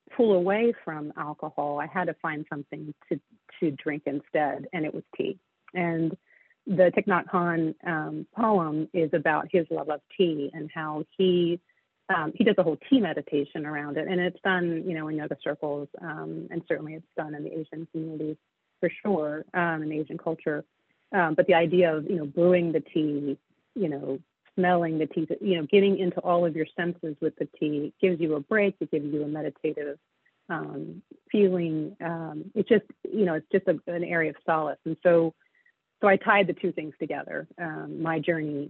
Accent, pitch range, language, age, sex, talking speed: American, 155-180 Hz, English, 40-59, female, 195 wpm